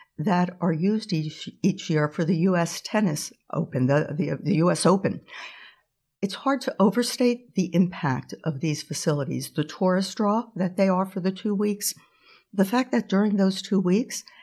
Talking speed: 170 wpm